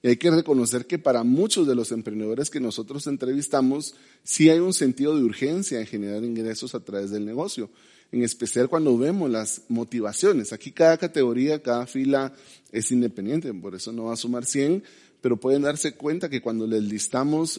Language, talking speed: Spanish, 185 wpm